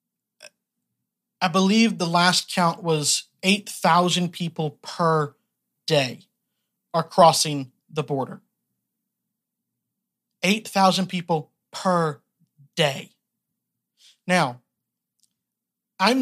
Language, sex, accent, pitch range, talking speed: English, male, American, 155-195 Hz, 75 wpm